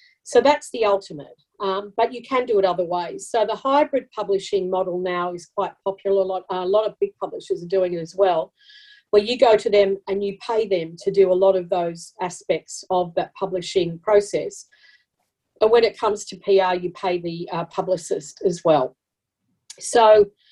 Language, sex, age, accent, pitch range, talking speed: English, female, 40-59, Australian, 185-210 Hz, 195 wpm